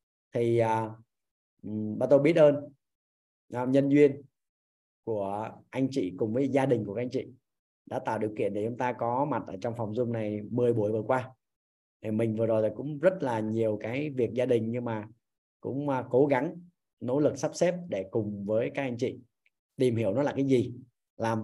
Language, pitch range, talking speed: Vietnamese, 110-140 Hz, 205 wpm